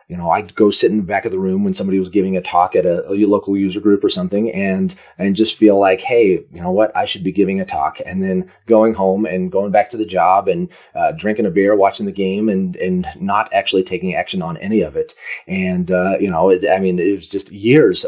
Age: 30-49